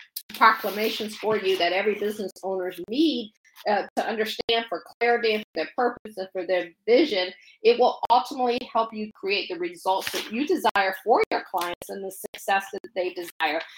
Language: English